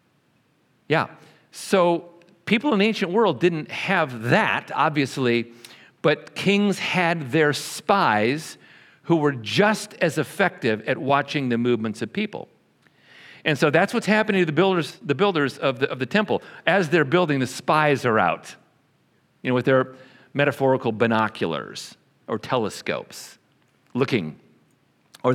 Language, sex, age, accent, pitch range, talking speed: English, male, 50-69, American, 120-165 Hz, 140 wpm